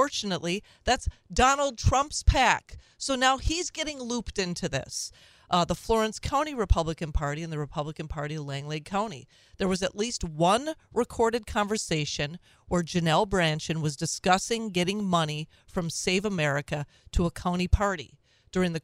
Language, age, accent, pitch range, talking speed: English, 40-59, American, 155-215 Hz, 155 wpm